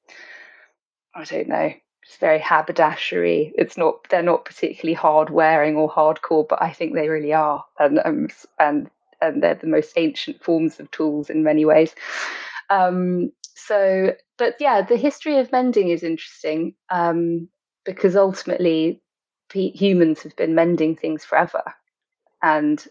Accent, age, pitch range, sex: British, 20-39, 160-210 Hz, female